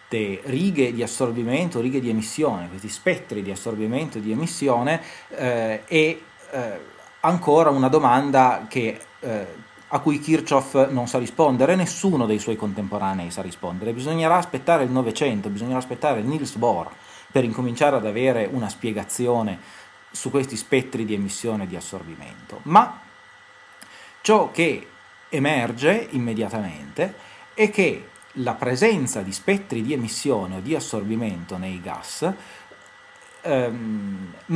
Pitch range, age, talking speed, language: 110-150 Hz, 30-49, 130 wpm, English